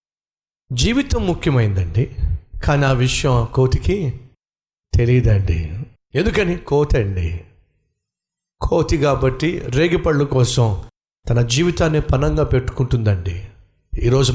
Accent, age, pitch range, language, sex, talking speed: native, 50-69, 130-160 Hz, Telugu, male, 80 wpm